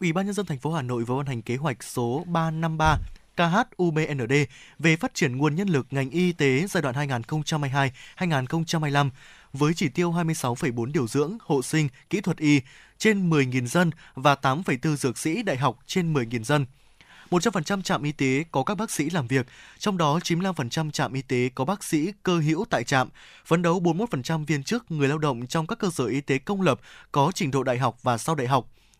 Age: 20-39